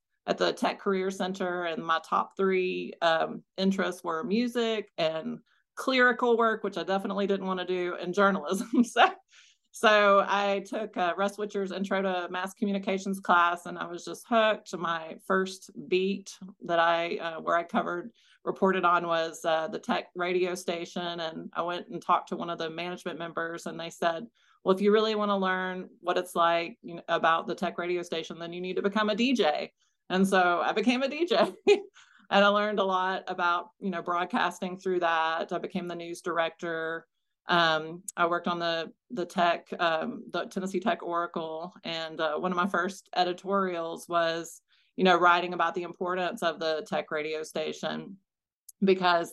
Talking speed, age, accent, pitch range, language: 180 wpm, 40-59, American, 170-200 Hz, English